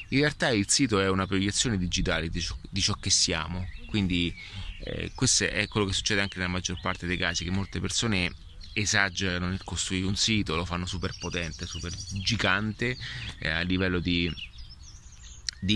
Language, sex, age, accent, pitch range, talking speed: Italian, male, 30-49, native, 85-100 Hz, 170 wpm